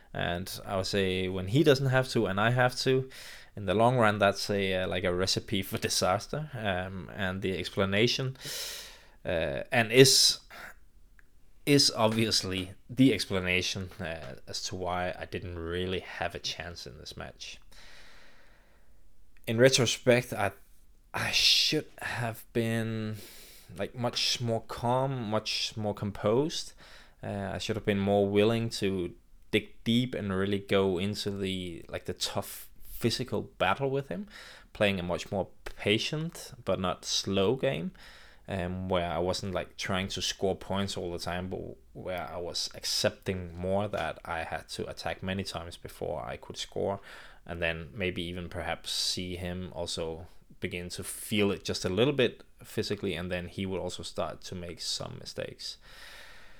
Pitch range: 90-115 Hz